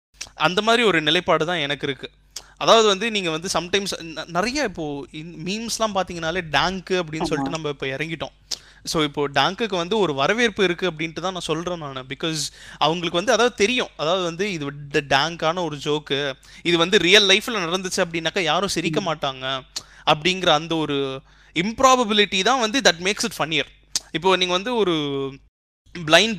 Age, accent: 20-39, native